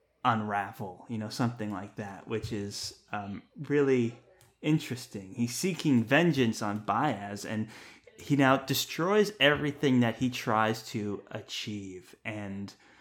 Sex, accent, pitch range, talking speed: male, American, 105-130 Hz, 125 wpm